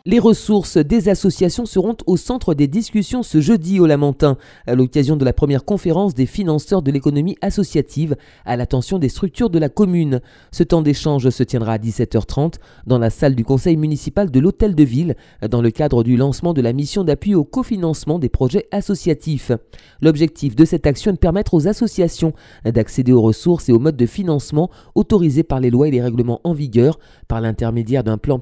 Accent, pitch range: French, 120-175 Hz